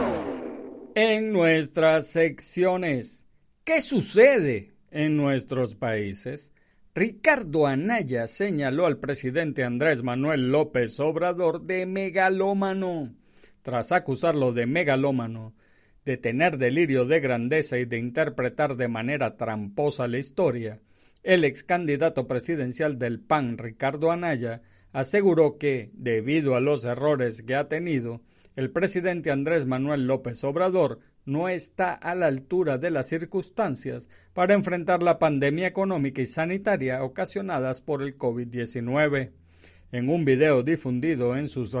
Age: 50-69